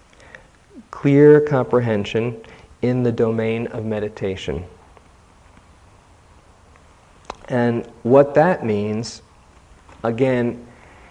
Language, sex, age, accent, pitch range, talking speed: English, male, 40-59, American, 95-135 Hz, 65 wpm